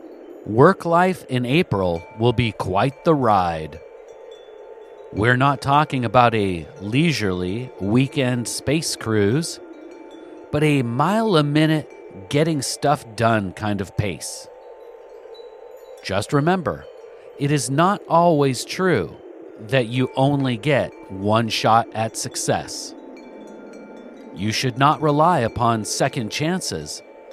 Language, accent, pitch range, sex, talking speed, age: English, American, 115-175 Hz, male, 110 wpm, 40-59